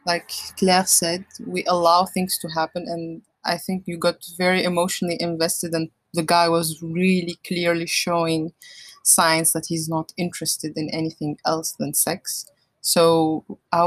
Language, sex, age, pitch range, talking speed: English, female, 20-39, 160-185 Hz, 150 wpm